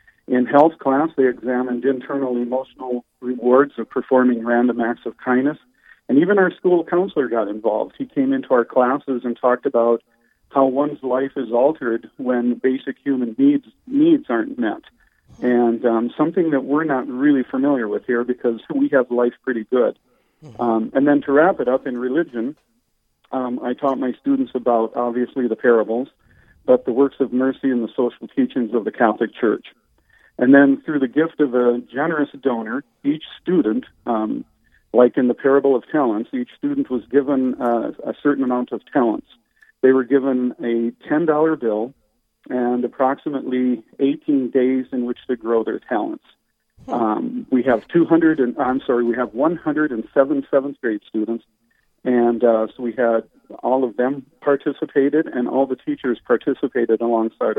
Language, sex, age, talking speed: English, male, 50-69, 165 wpm